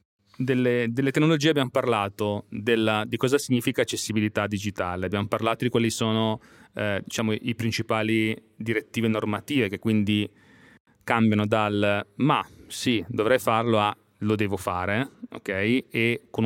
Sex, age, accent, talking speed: male, 30-49, native, 125 wpm